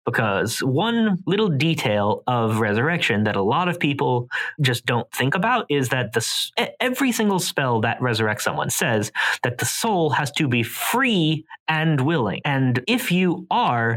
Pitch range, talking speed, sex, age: 115-160 Hz, 160 wpm, male, 20-39